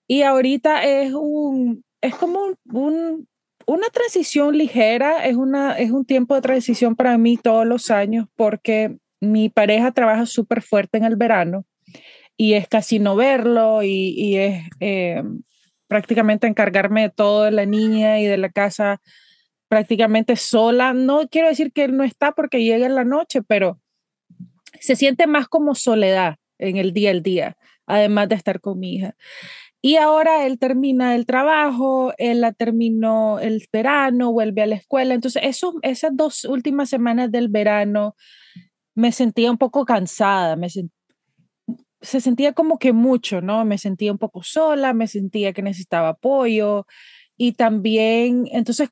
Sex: female